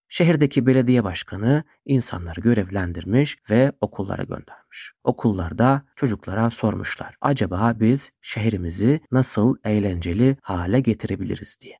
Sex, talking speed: male, 95 wpm